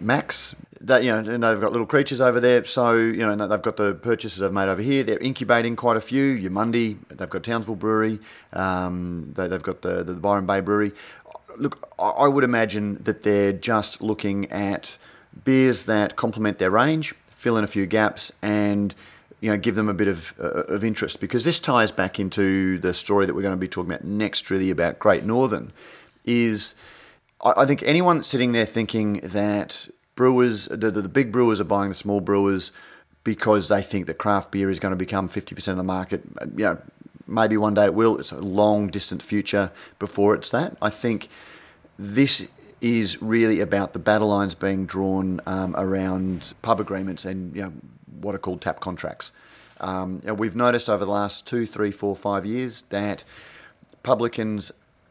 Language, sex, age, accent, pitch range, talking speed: English, male, 30-49, Australian, 95-115 Hz, 185 wpm